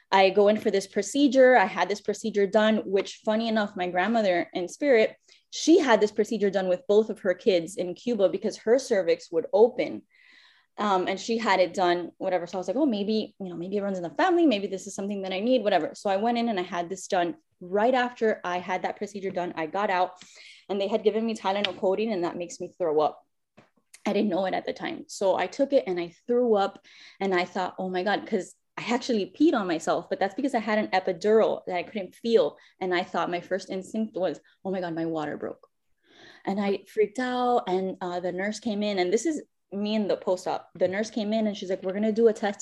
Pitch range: 185-220 Hz